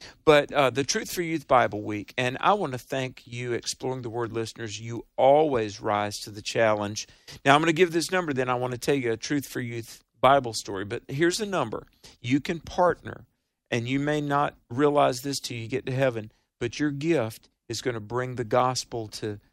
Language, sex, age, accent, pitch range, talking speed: English, male, 50-69, American, 115-145 Hz, 220 wpm